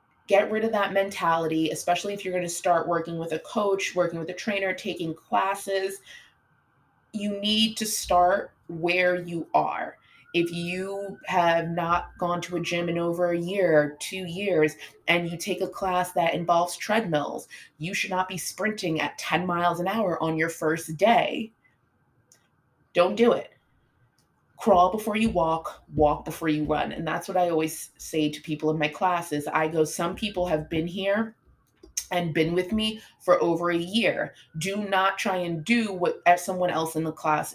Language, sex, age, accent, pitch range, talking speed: English, female, 20-39, American, 160-190 Hz, 180 wpm